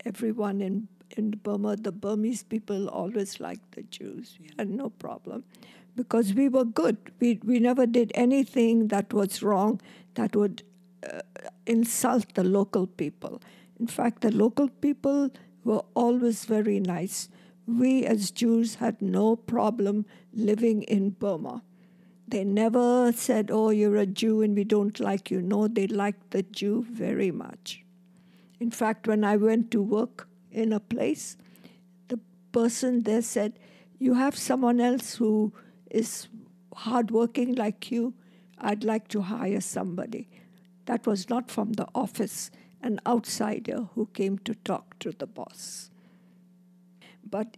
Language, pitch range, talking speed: English, 195-235 Hz, 145 wpm